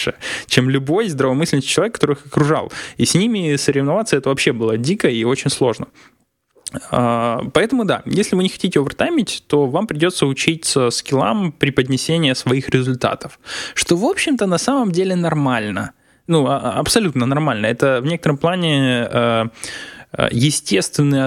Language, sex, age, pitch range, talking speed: Russian, male, 20-39, 120-160 Hz, 135 wpm